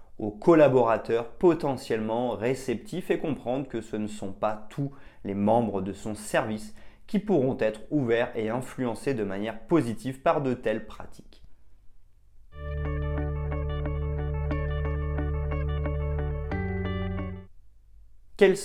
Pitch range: 100-135 Hz